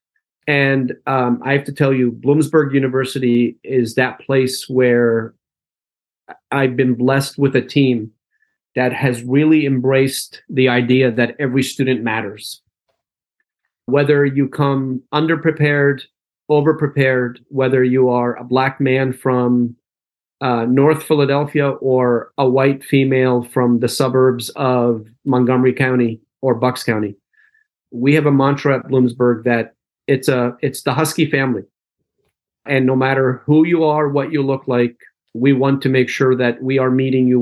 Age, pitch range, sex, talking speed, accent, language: 40-59, 125-140 Hz, male, 145 wpm, American, English